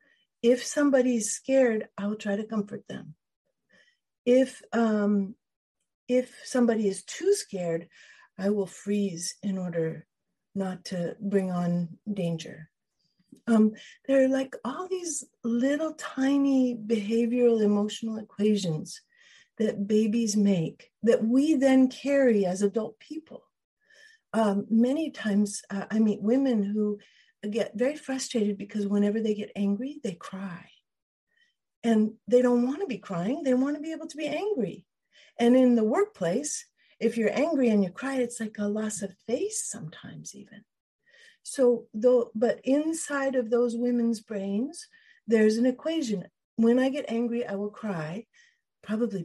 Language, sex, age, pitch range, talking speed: English, female, 50-69, 205-270 Hz, 140 wpm